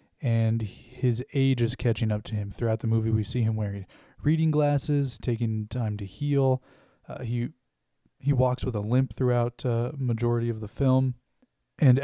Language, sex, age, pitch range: English, male, 20-39, 110-130 Hz